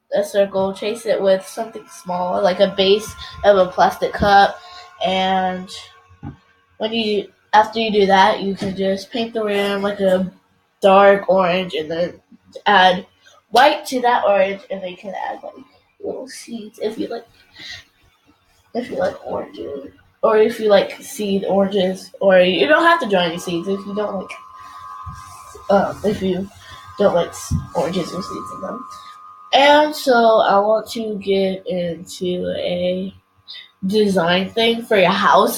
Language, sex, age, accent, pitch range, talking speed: English, female, 10-29, American, 180-225 Hz, 160 wpm